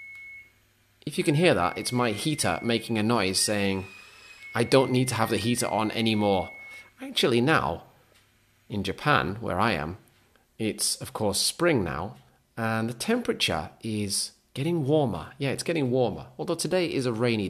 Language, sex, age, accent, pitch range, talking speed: English, male, 30-49, British, 100-135 Hz, 165 wpm